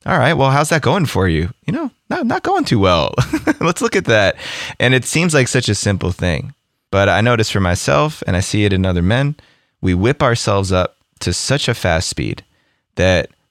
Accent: American